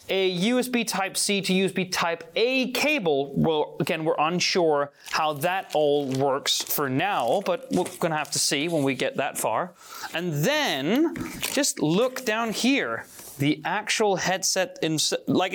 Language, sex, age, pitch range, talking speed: Italian, male, 30-49, 155-205 Hz, 155 wpm